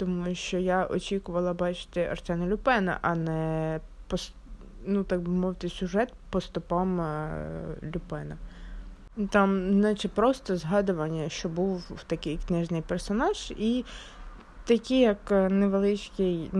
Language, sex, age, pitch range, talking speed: Ukrainian, female, 20-39, 170-210 Hz, 110 wpm